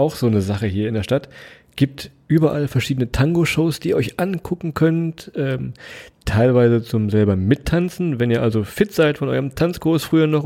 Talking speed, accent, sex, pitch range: 185 wpm, German, male, 115-160 Hz